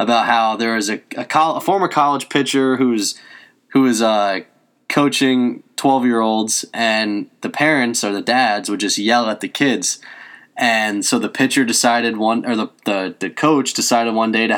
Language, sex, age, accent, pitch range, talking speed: English, male, 20-39, American, 110-130 Hz, 190 wpm